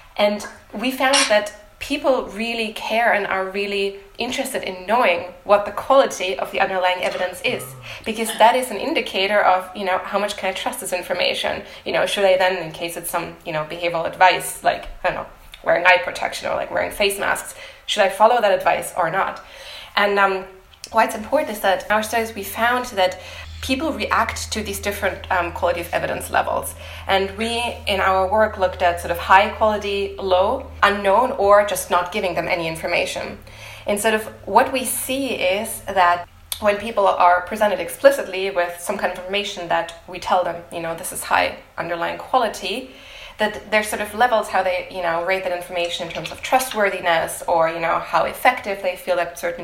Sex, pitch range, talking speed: female, 180-220 Hz, 200 wpm